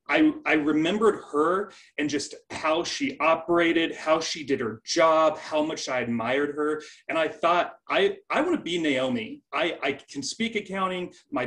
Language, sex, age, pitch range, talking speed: English, male, 30-49, 135-225 Hz, 175 wpm